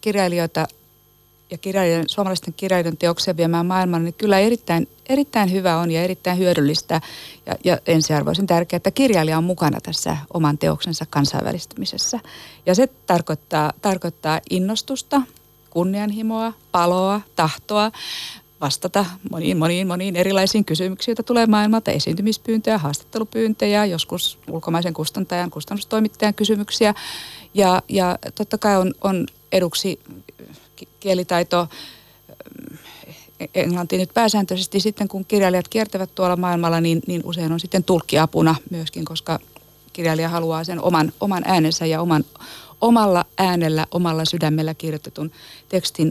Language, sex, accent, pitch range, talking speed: Finnish, female, native, 160-205 Hz, 120 wpm